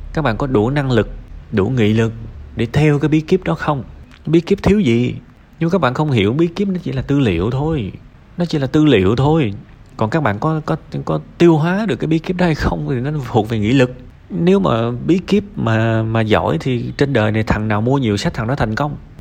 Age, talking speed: 20-39, 250 wpm